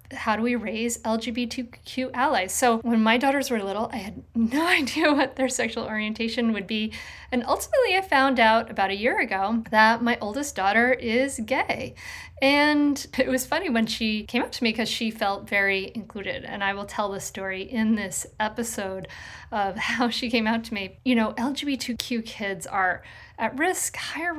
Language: English